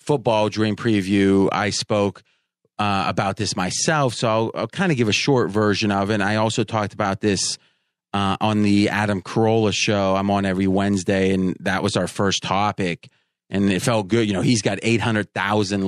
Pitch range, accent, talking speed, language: 100-120 Hz, American, 185 wpm, English